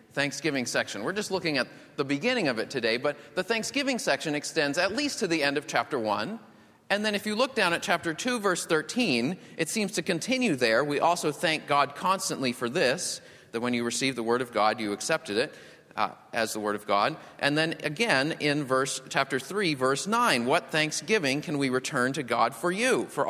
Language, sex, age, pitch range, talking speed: English, male, 30-49, 140-215 Hz, 215 wpm